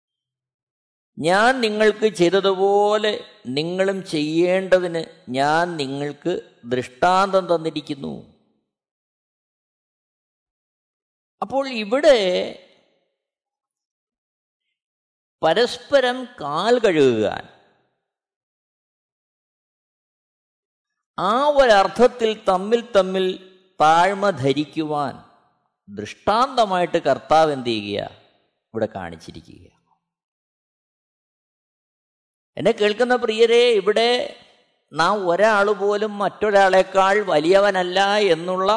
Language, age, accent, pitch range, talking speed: Malayalam, 50-69, native, 160-220 Hz, 55 wpm